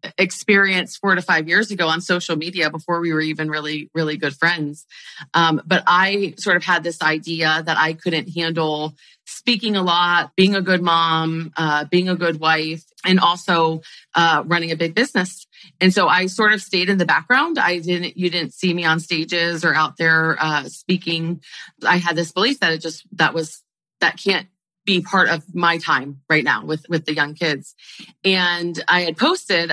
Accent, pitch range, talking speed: American, 160-185 Hz, 195 wpm